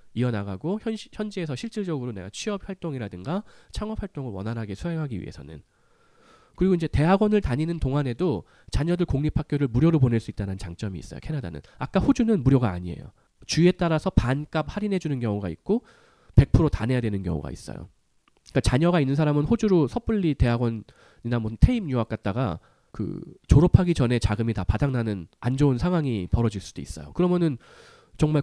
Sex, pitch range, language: male, 110-170 Hz, Korean